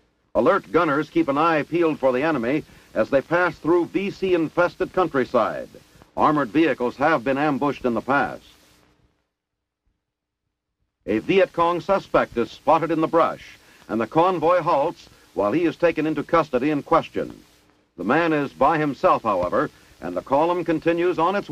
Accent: American